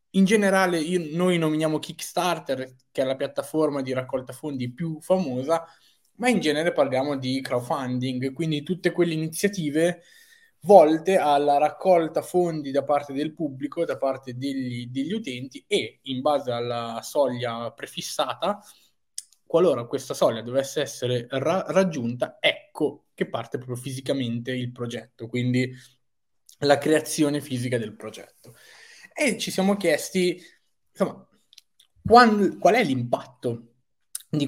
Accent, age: native, 20-39